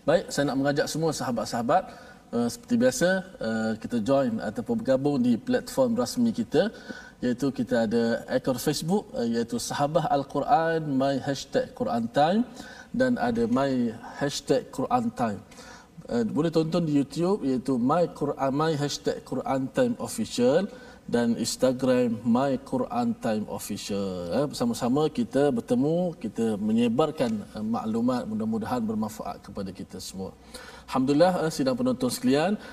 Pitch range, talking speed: 150-250 Hz, 135 wpm